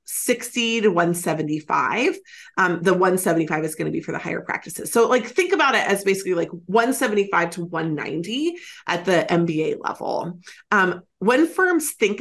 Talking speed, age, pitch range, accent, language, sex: 160 wpm, 30-49, 170-220 Hz, American, English, female